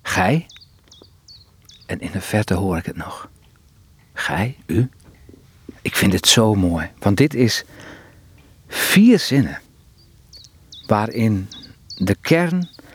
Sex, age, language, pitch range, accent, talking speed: male, 50-69, Dutch, 100-130 Hz, Dutch, 110 wpm